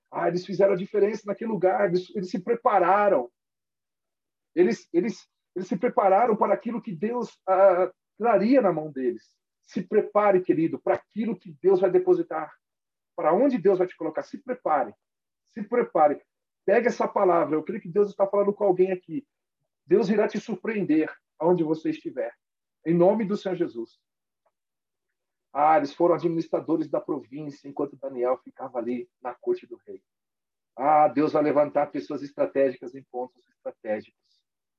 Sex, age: male, 40-59